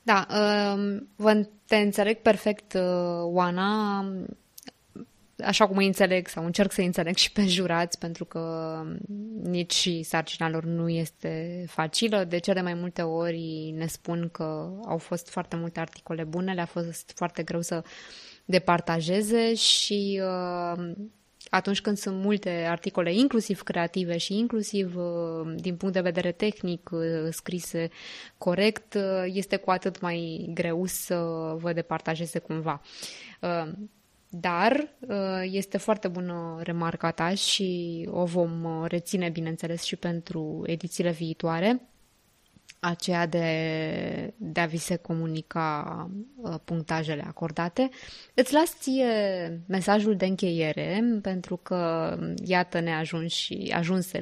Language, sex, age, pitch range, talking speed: Romanian, female, 20-39, 165-200 Hz, 120 wpm